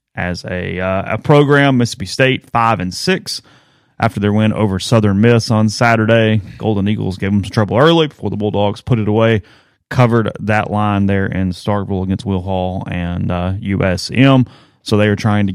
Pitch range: 95-120 Hz